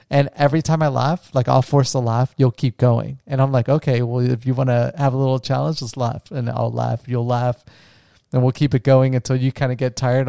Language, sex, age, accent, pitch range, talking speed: English, male, 30-49, American, 120-135 Hz, 255 wpm